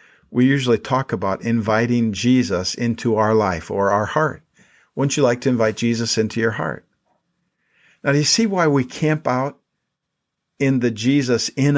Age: 50-69